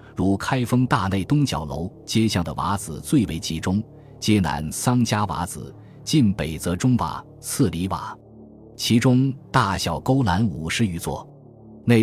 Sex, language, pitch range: male, Chinese, 85-120 Hz